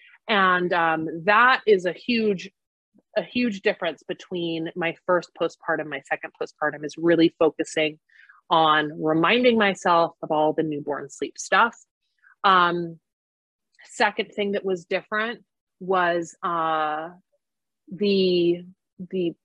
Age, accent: 30-49, American